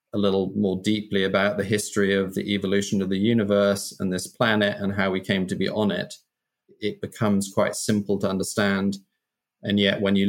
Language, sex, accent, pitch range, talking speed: English, male, British, 95-105 Hz, 200 wpm